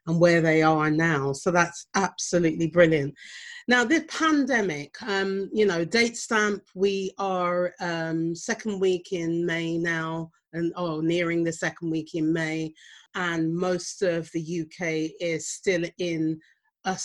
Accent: British